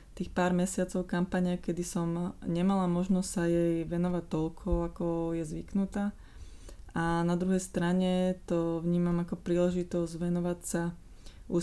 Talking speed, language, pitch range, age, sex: 135 wpm, Slovak, 170-195 Hz, 20-39, female